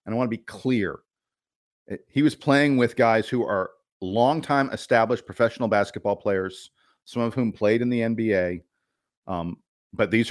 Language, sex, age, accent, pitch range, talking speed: English, male, 40-59, American, 105-130 Hz, 165 wpm